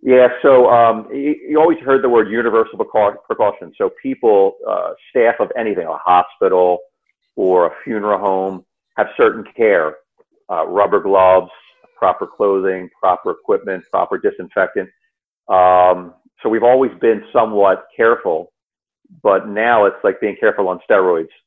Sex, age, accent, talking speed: male, 50-69, American, 135 wpm